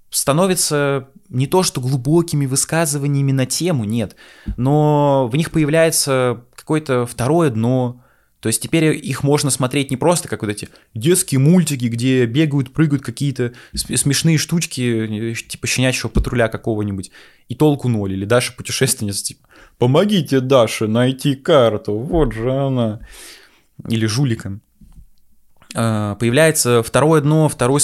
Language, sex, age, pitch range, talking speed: Russian, male, 20-39, 110-140 Hz, 125 wpm